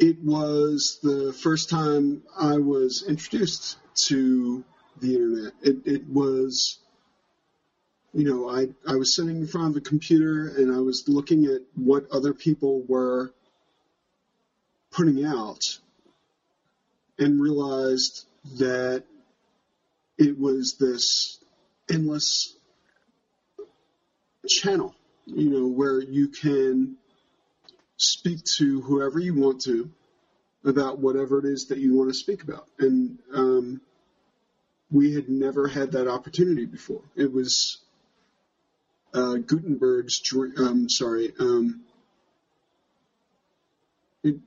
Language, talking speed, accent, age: English, 115 wpm, American, 40-59